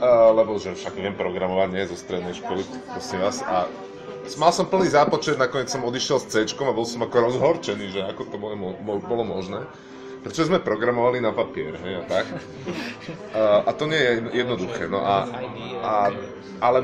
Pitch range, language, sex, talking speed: 100-140 Hz, Slovak, male, 180 wpm